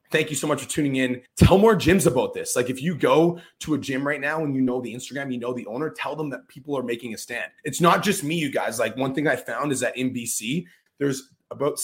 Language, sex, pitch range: English, male, 125-160 Hz